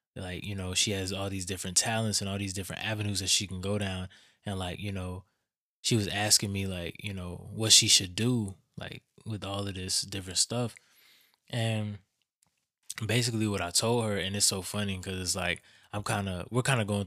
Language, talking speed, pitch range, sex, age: English, 215 wpm, 95-105 Hz, male, 20-39